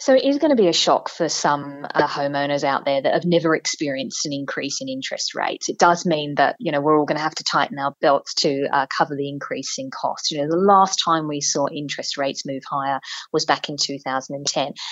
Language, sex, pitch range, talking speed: English, female, 145-205 Hz, 240 wpm